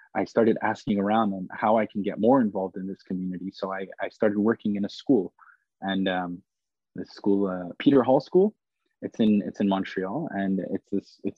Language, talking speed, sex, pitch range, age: English, 195 wpm, male, 95-105 Hz, 20-39